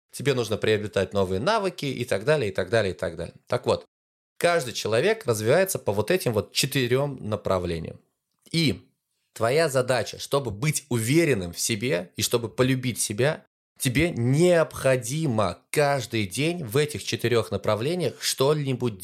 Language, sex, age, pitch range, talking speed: Russian, male, 20-39, 100-145 Hz, 145 wpm